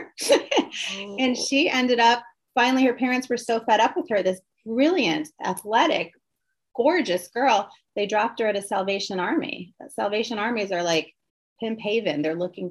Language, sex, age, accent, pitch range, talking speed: English, female, 30-49, American, 170-225 Hz, 155 wpm